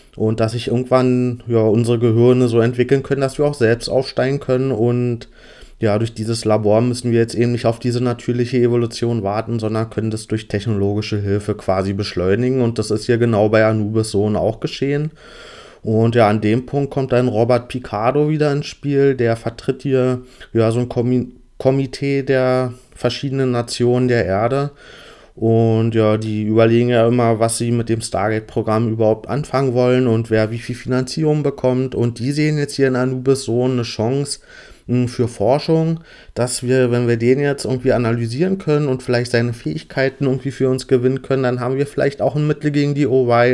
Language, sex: German, male